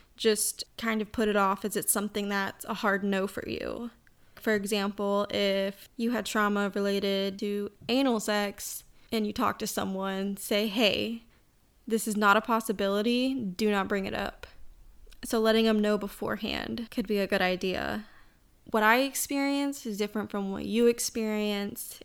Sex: female